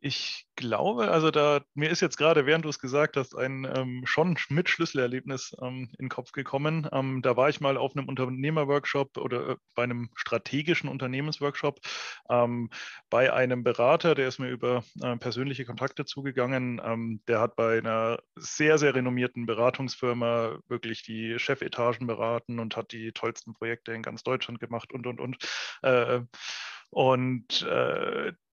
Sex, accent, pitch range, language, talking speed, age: male, German, 125-145 Hz, German, 160 wpm, 30-49